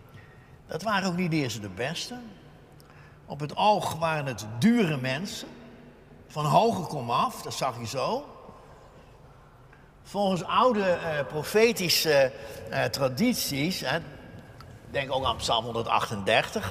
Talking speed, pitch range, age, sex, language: 125 wpm, 130-205 Hz, 60-79, male, Dutch